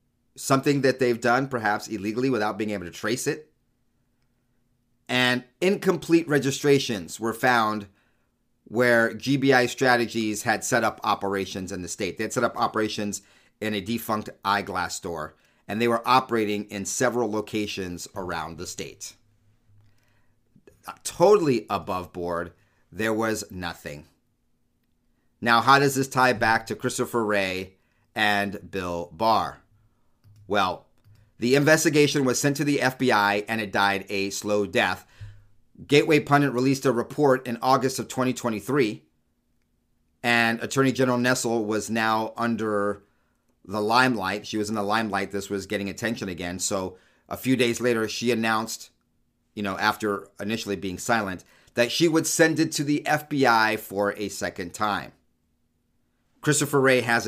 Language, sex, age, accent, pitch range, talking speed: English, male, 40-59, American, 100-125 Hz, 140 wpm